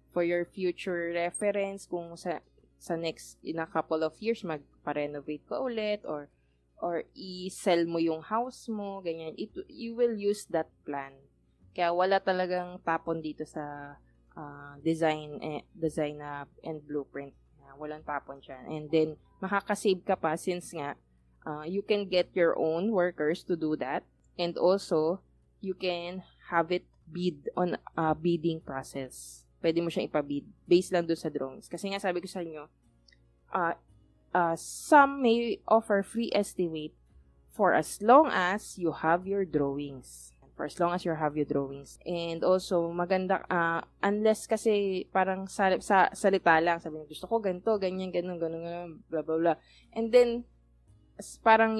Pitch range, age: 155-195 Hz, 20-39